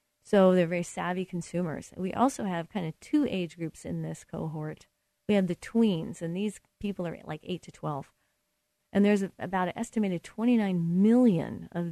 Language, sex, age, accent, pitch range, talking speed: English, female, 40-59, American, 170-215 Hz, 185 wpm